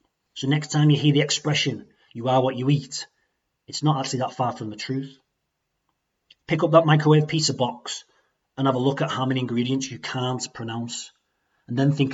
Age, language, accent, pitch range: 30-49, English, British, 120-145 Hz